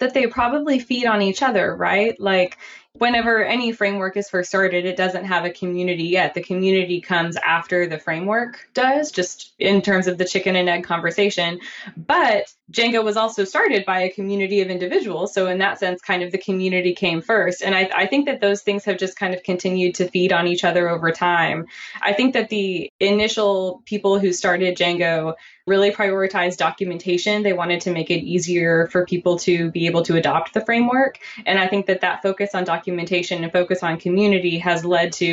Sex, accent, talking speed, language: female, American, 200 wpm, English